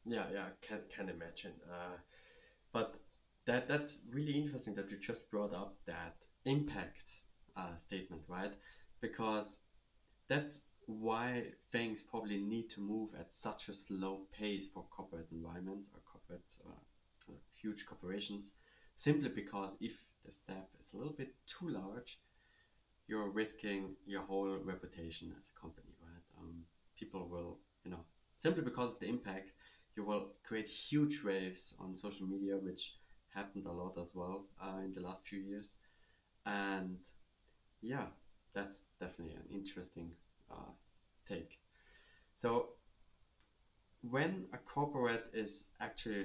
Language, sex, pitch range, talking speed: English, male, 90-105 Hz, 140 wpm